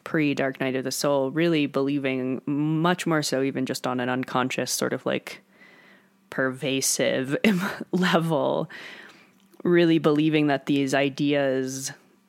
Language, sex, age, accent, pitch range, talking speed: English, female, 20-39, American, 140-195 Hz, 120 wpm